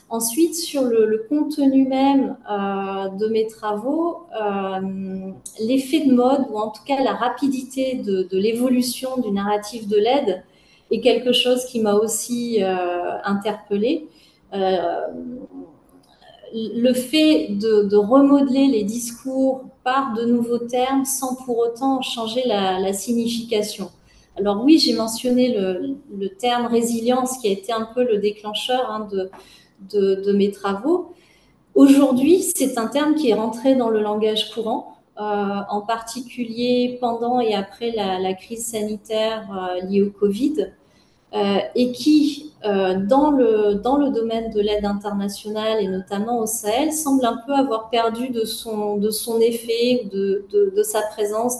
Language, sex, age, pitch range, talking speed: French, female, 30-49, 205-255 Hz, 150 wpm